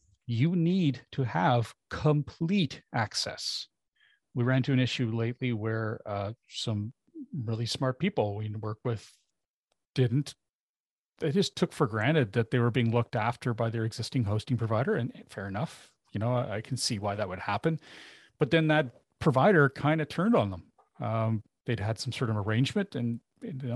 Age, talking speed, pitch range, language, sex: 40-59, 175 wpm, 115-145 Hz, English, male